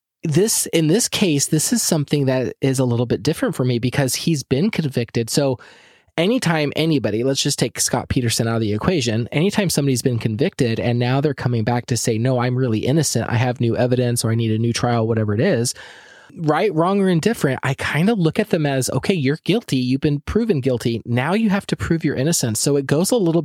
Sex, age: male, 20-39